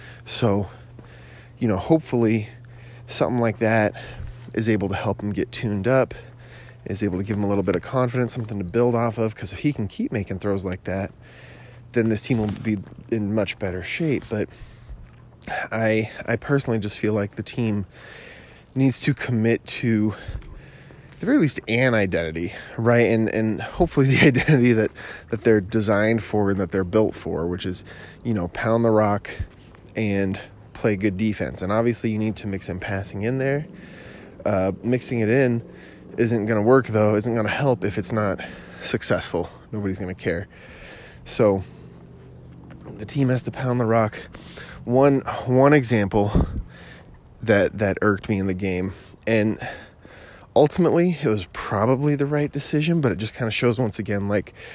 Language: English